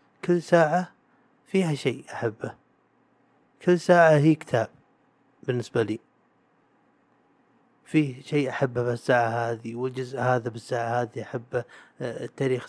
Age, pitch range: 30-49, 120-130 Hz